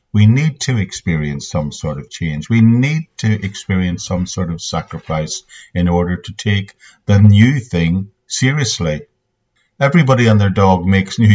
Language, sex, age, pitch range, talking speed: English, male, 50-69, 90-115 Hz, 160 wpm